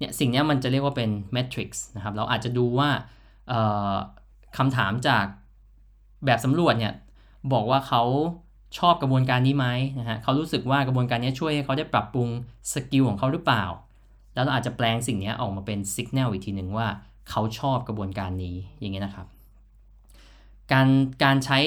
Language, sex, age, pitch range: Thai, male, 20-39, 105-135 Hz